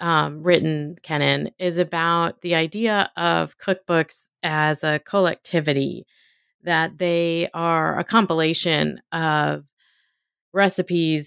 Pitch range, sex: 140-165 Hz, female